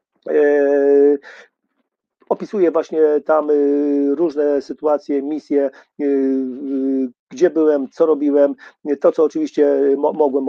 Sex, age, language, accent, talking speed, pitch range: male, 40-59, Polish, native, 105 wpm, 145-170 Hz